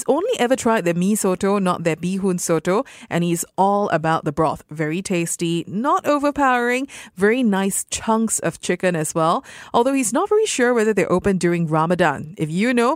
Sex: female